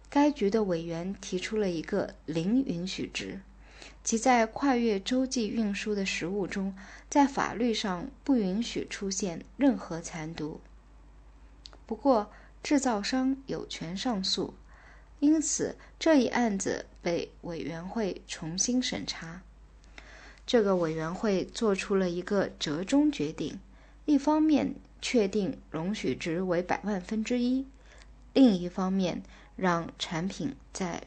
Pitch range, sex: 180-250 Hz, female